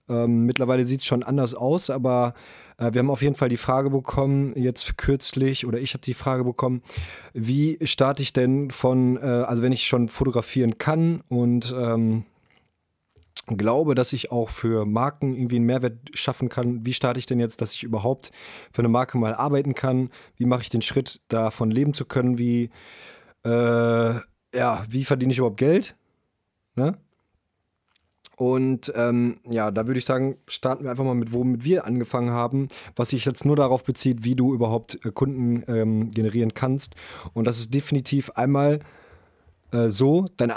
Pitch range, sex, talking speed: 115-135 Hz, male, 175 wpm